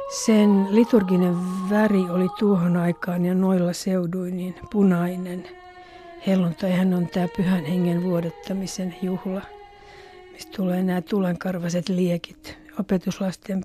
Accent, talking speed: native, 105 wpm